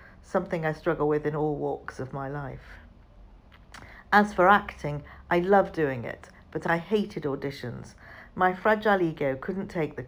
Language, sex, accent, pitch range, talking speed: English, female, British, 145-195 Hz, 160 wpm